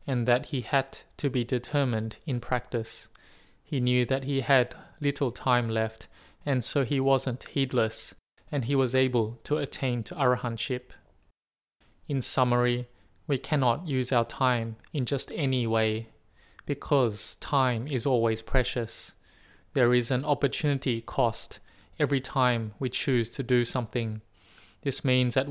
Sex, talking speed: male, 145 wpm